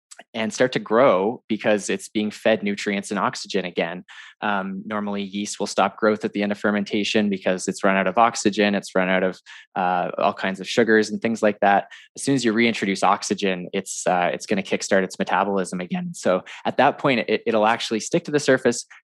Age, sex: 20-39, male